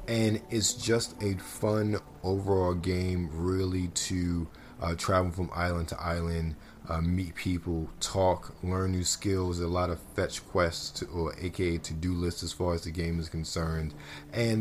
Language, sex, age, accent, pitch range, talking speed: English, male, 30-49, American, 80-95 Hz, 160 wpm